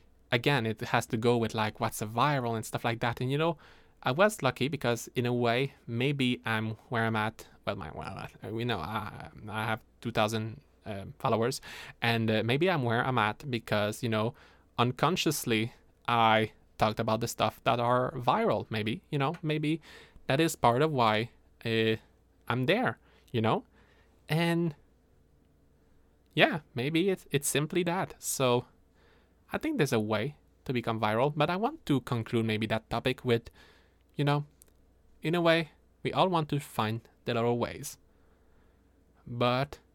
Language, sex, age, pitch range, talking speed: English, male, 20-39, 110-140 Hz, 170 wpm